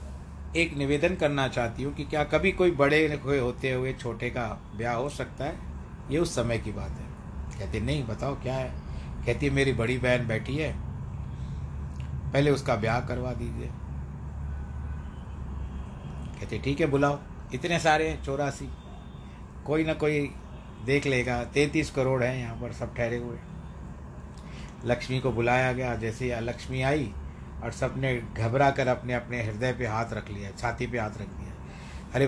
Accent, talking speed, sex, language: native, 160 wpm, male, Hindi